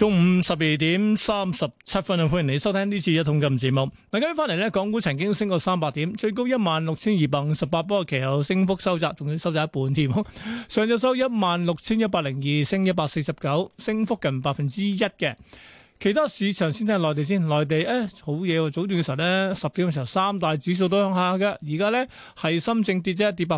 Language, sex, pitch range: Chinese, male, 160-205 Hz